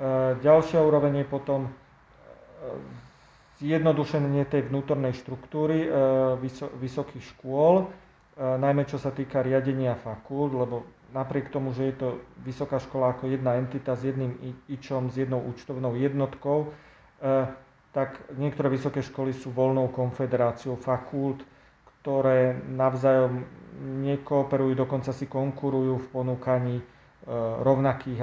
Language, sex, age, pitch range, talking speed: Slovak, male, 40-59, 130-140 Hz, 110 wpm